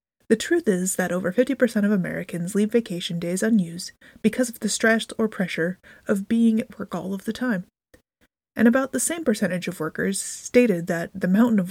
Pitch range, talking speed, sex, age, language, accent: 185-230 Hz, 195 wpm, female, 30-49, English, American